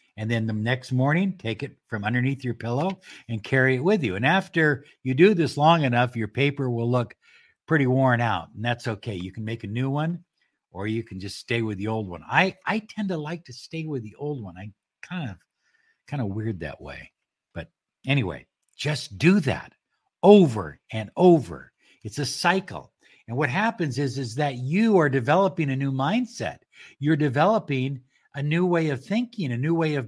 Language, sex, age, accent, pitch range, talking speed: English, male, 60-79, American, 105-150 Hz, 200 wpm